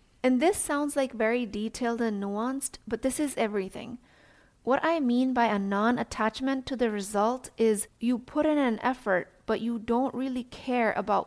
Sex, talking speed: female, 175 wpm